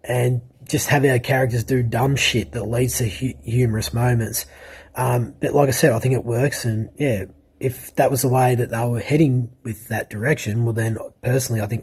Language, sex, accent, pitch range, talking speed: English, male, Australian, 110-130 Hz, 210 wpm